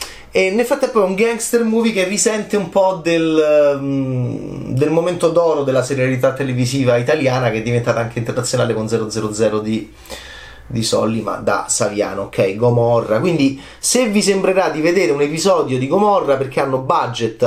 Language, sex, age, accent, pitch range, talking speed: Italian, male, 30-49, native, 120-165 Hz, 160 wpm